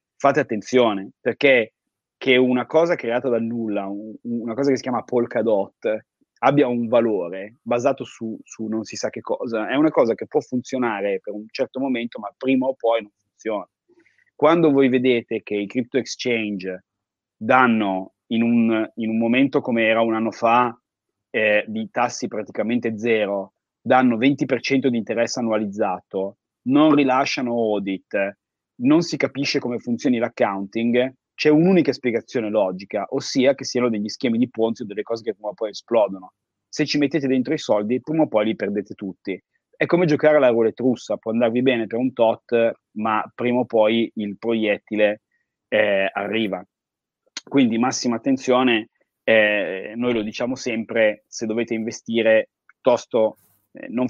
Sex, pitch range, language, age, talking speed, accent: male, 110-130 Hz, Italian, 30-49, 155 wpm, native